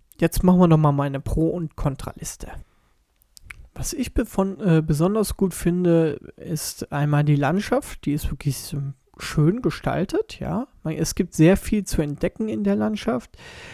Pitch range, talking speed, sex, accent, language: 150-175 Hz, 155 wpm, male, German, German